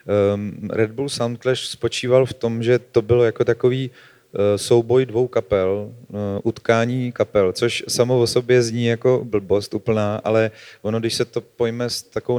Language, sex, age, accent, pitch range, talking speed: Czech, male, 40-59, native, 110-120 Hz, 170 wpm